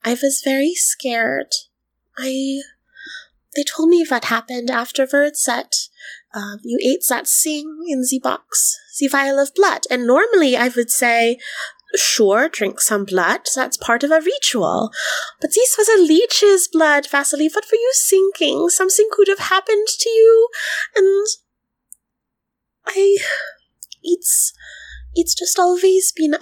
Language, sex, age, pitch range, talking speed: English, female, 20-39, 250-370 Hz, 140 wpm